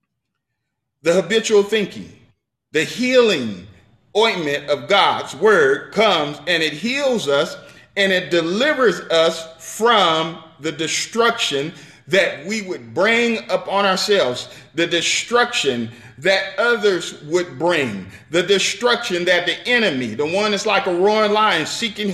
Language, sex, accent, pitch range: English, male, American, 160-220 Hz